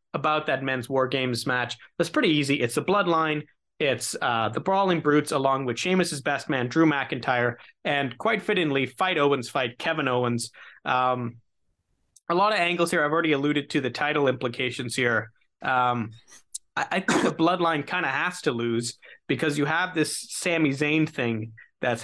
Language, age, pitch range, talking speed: English, 30-49, 125-160 Hz, 175 wpm